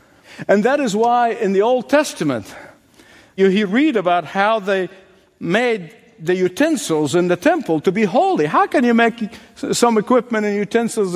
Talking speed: 165 wpm